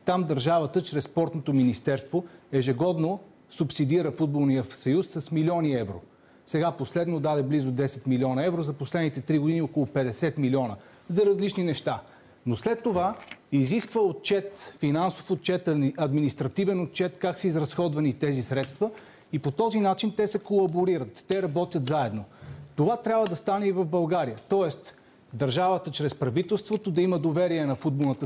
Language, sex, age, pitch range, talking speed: Bulgarian, male, 40-59, 135-180 Hz, 145 wpm